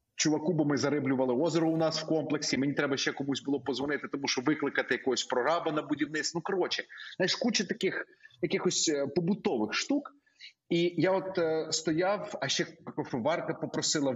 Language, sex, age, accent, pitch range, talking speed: Ukrainian, male, 30-49, native, 150-200 Hz, 160 wpm